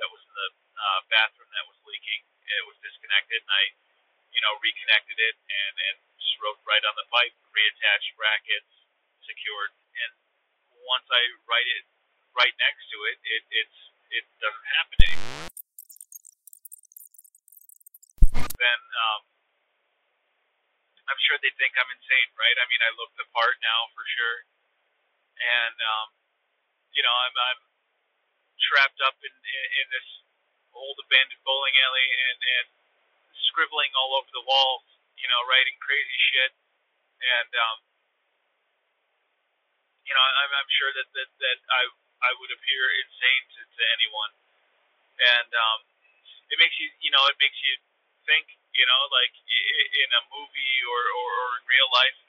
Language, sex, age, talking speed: English, male, 40-59, 150 wpm